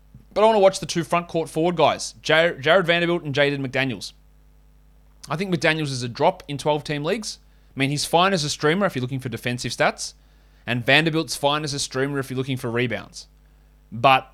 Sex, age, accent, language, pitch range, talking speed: male, 20-39, Australian, English, 115-150 Hz, 210 wpm